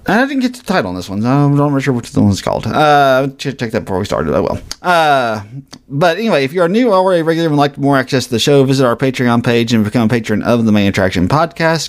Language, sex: English, male